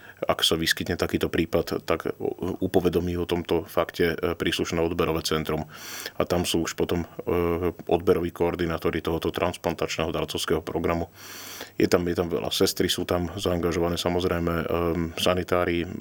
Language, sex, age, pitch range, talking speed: Slovak, male, 30-49, 85-90 Hz, 130 wpm